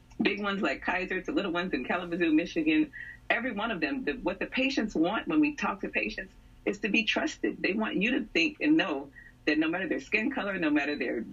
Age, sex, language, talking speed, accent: 40-59, female, English, 235 wpm, American